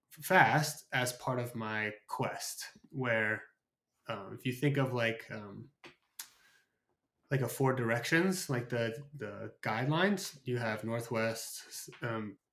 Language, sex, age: English, male, 20-39